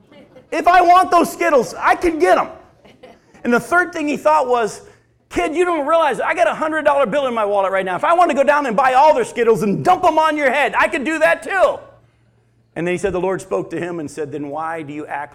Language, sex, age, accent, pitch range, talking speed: English, male, 40-59, American, 130-215 Hz, 270 wpm